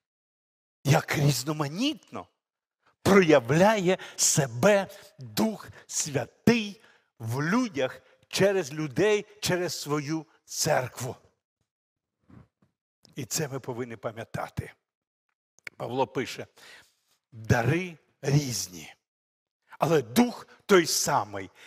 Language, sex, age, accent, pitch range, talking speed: Ukrainian, male, 60-79, native, 135-180 Hz, 70 wpm